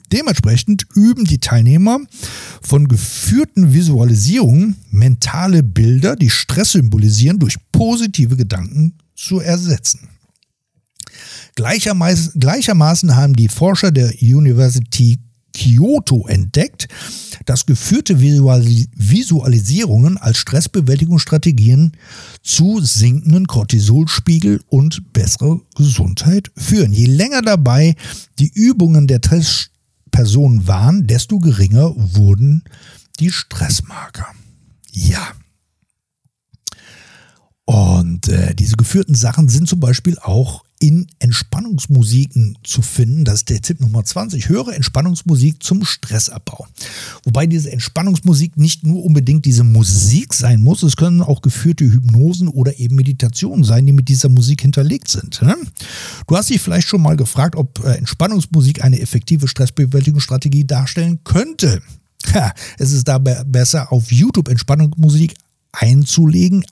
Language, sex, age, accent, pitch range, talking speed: German, male, 60-79, German, 120-165 Hz, 110 wpm